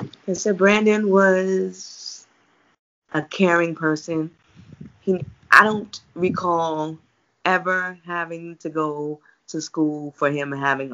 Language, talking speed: English, 110 wpm